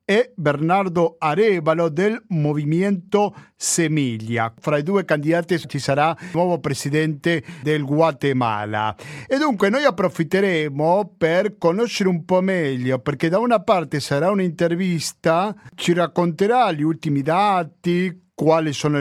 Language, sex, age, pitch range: Italian, male, 50-69, 150-195 Hz